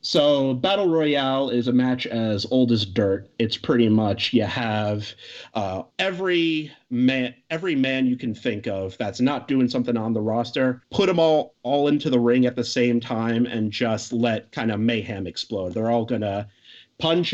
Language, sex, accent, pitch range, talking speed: English, male, American, 105-130 Hz, 180 wpm